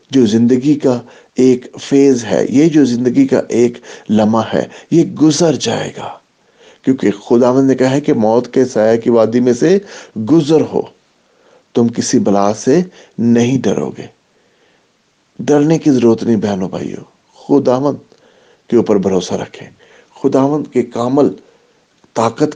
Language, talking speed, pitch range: English, 135 wpm, 115-140 Hz